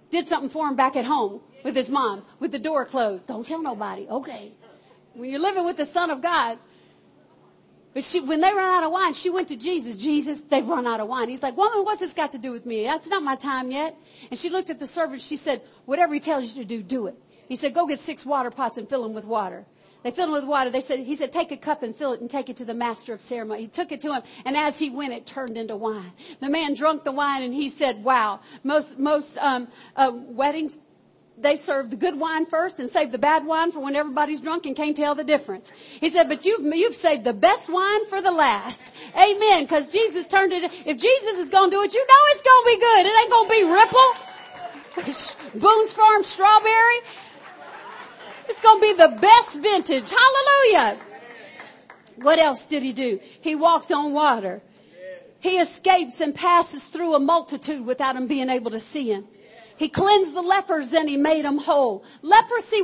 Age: 50-69